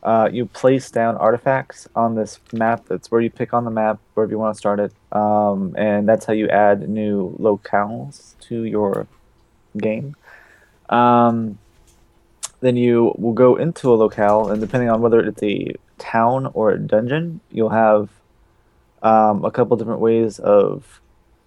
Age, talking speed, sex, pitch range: 20-39, 160 wpm, male, 105-120 Hz